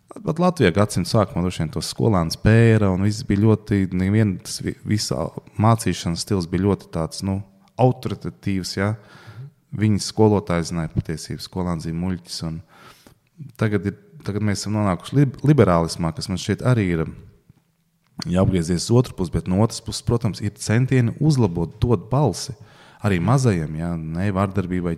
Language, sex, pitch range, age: English, male, 85-115 Hz, 20-39